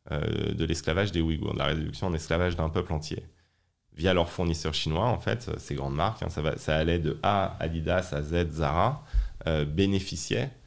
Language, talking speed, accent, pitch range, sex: French, 190 wpm, French, 80-105 Hz, male